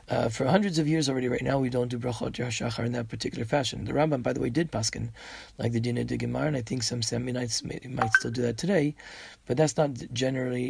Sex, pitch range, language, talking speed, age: male, 120-150 Hz, English, 245 wpm, 30-49